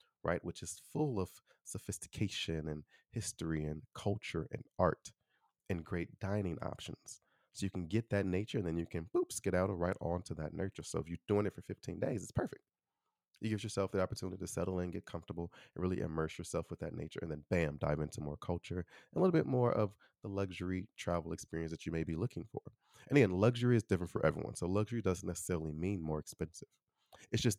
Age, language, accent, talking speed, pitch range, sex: 30-49, English, American, 215 wpm, 85-110 Hz, male